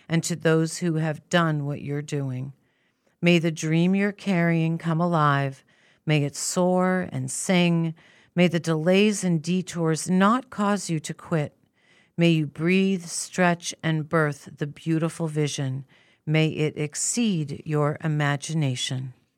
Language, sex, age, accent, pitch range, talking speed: English, female, 50-69, American, 155-185 Hz, 140 wpm